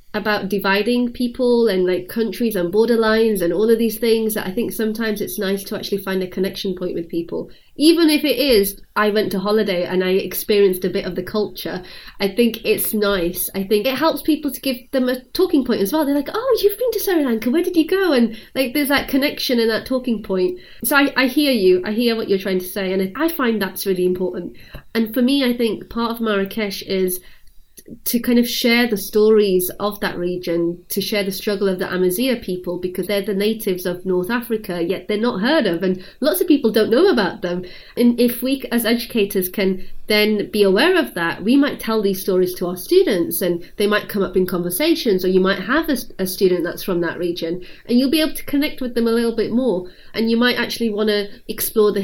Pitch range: 190-245 Hz